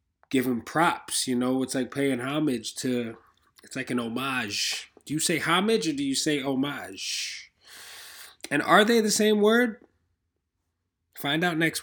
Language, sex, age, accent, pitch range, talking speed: English, male, 20-39, American, 115-150 Hz, 155 wpm